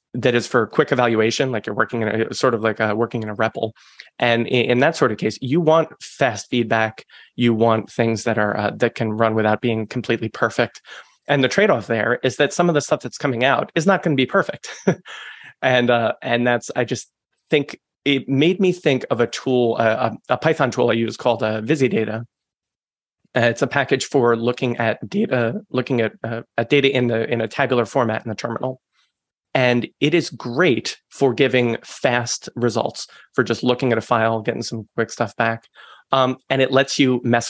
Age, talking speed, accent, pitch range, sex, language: 30-49, 210 wpm, American, 115-135 Hz, male, English